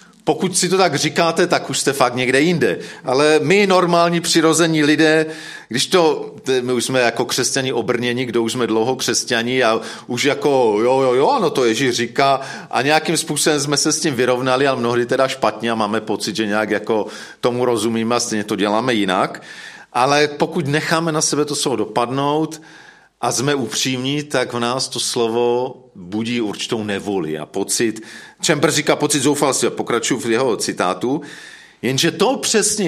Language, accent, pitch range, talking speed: Czech, native, 115-155 Hz, 175 wpm